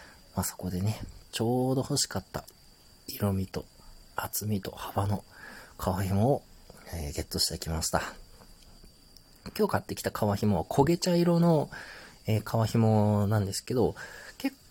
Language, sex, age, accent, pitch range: Japanese, male, 40-59, native, 95-130 Hz